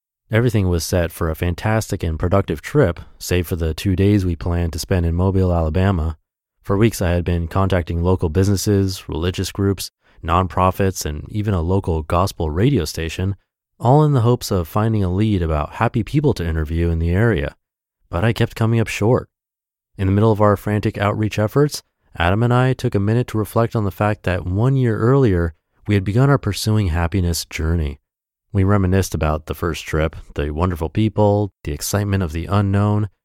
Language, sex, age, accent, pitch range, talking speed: English, male, 30-49, American, 85-110 Hz, 190 wpm